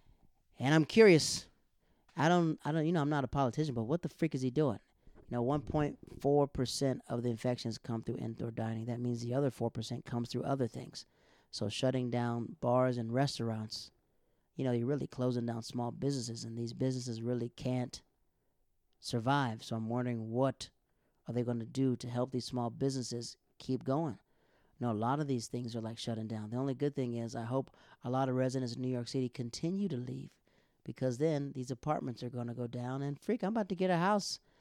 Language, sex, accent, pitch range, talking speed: English, male, American, 120-140 Hz, 205 wpm